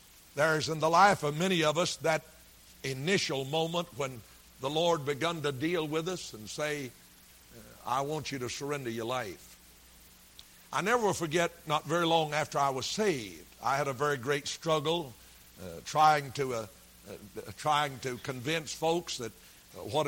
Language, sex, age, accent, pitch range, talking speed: English, male, 60-79, American, 125-165 Hz, 165 wpm